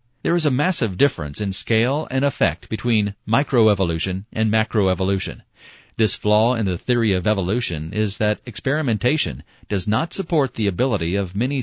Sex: male